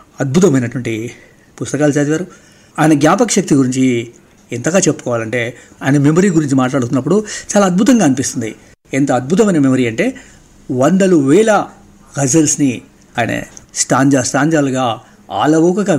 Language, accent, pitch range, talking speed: Telugu, native, 120-155 Hz, 100 wpm